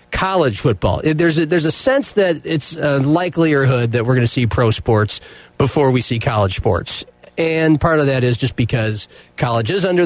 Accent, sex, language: American, male, English